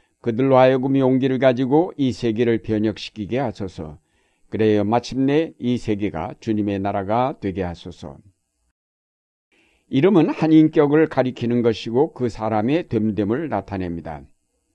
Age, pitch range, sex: 60-79, 100-130 Hz, male